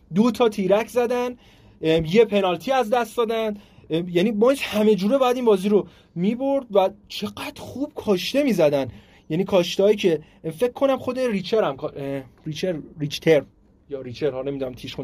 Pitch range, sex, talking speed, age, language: 155-215 Hz, male, 155 wpm, 30-49, Persian